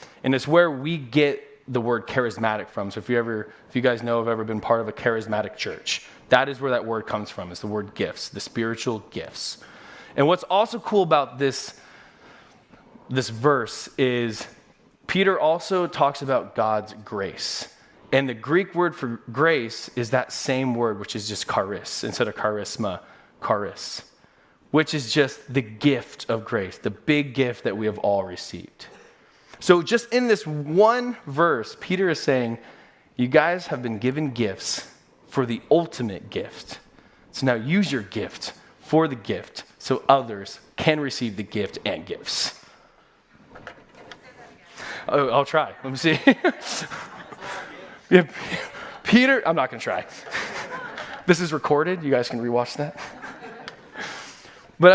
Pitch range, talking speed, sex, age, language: 115-165 Hz, 155 wpm, male, 20-39, English